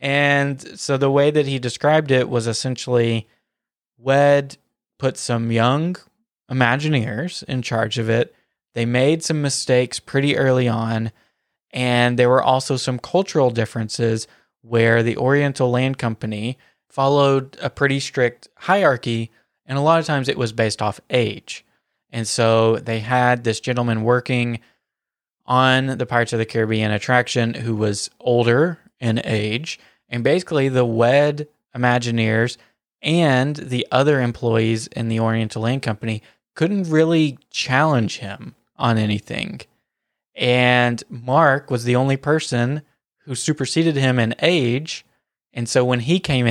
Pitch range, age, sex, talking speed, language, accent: 115-140 Hz, 20-39, male, 140 wpm, English, American